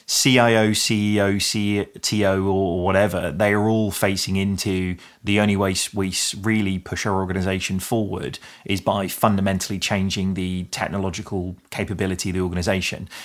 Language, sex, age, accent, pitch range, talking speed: English, male, 30-49, British, 95-110 Hz, 130 wpm